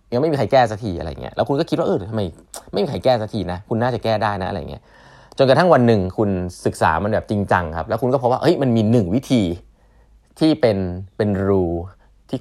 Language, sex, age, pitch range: Thai, male, 20-39, 90-125 Hz